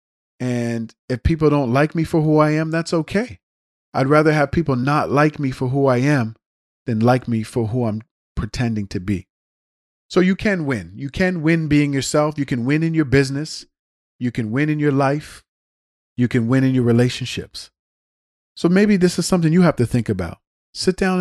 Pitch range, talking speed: 115-150 Hz, 200 wpm